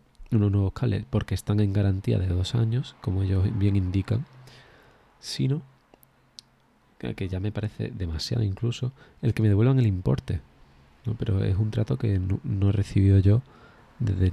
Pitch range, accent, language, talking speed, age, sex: 95-115 Hz, Spanish, Spanish, 160 wpm, 20-39, male